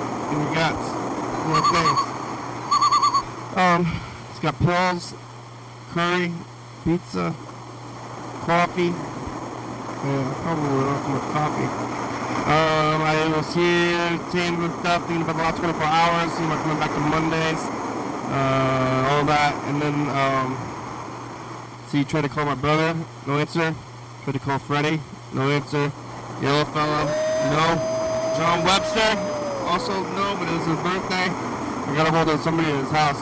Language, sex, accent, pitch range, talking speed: English, male, American, 140-170 Hz, 145 wpm